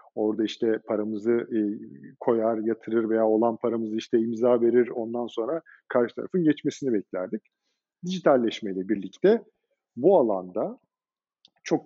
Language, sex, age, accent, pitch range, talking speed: Turkish, male, 50-69, native, 120-195 Hz, 115 wpm